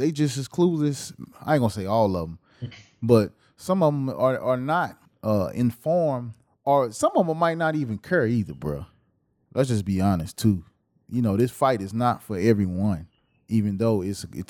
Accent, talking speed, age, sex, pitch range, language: American, 190 wpm, 20-39, male, 105-130 Hz, English